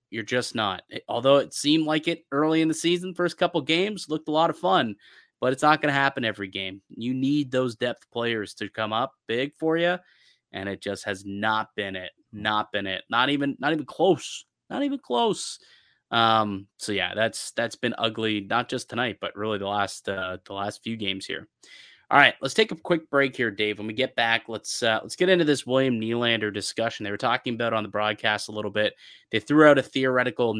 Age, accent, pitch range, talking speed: 20-39, American, 105-140 Hz, 225 wpm